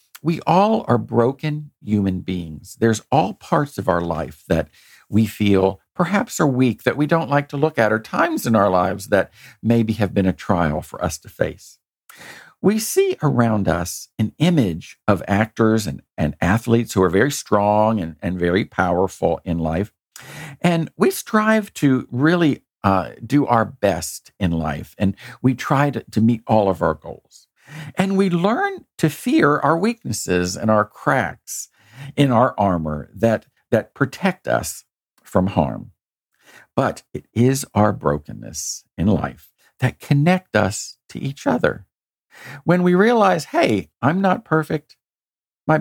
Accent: American